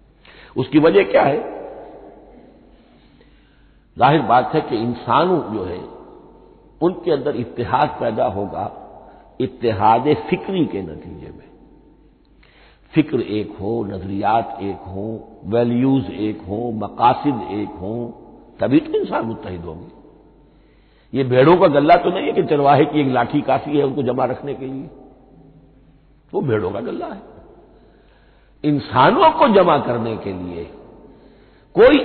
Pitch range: 105-145 Hz